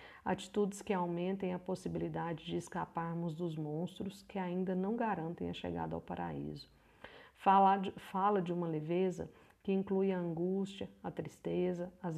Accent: Brazilian